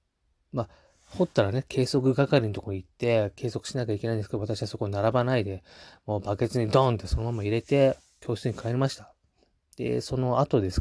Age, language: 20-39, Japanese